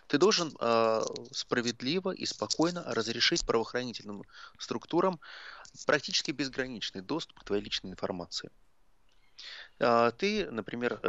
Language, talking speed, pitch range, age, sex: Russian, 105 wpm, 100-125 Hz, 30-49, male